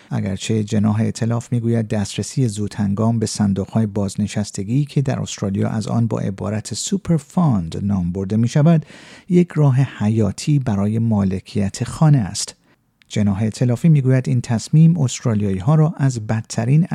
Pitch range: 105-135 Hz